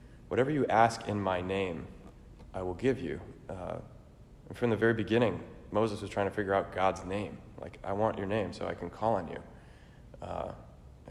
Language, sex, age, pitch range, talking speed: English, male, 30-49, 95-110 Hz, 195 wpm